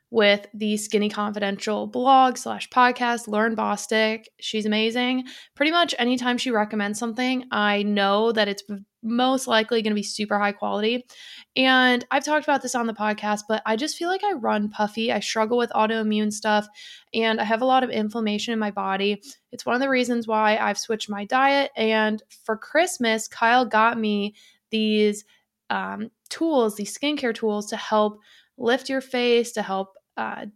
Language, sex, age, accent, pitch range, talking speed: English, female, 20-39, American, 210-245 Hz, 175 wpm